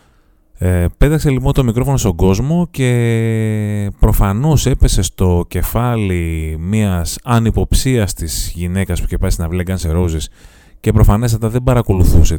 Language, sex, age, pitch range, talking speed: Greek, male, 30-49, 85-125 Hz, 125 wpm